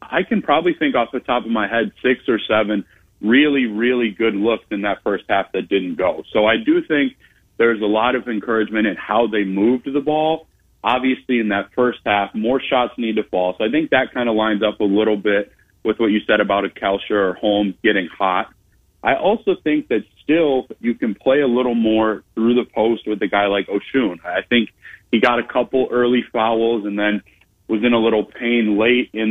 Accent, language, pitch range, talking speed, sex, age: American, English, 105-130 Hz, 220 wpm, male, 30-49